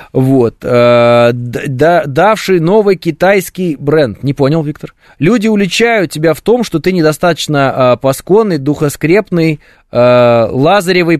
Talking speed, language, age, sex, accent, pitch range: 125 wpm, Russian, 20-39, male, native, 110-145 Hz